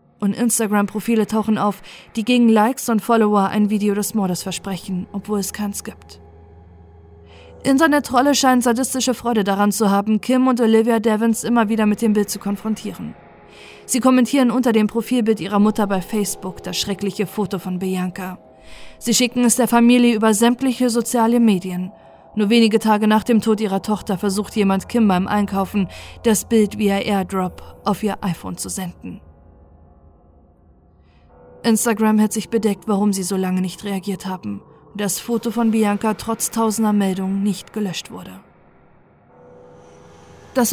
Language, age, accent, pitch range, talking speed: German, 20-39, German, 190-230 Hz, 155 wpm